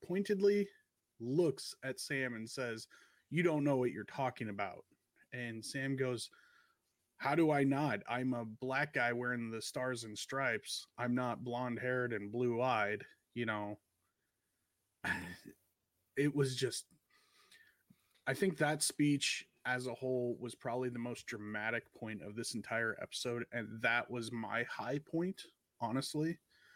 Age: 30-49